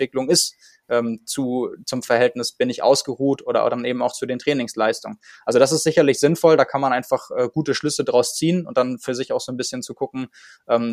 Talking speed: 225 wpm